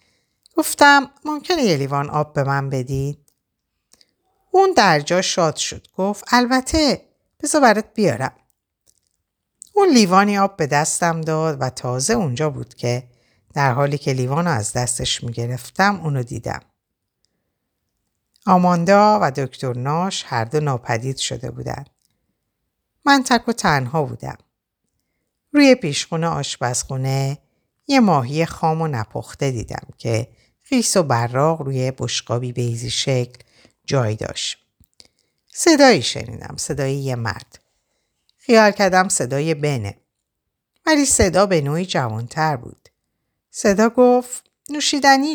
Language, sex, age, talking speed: Persian, female, 50-69, 115 wpm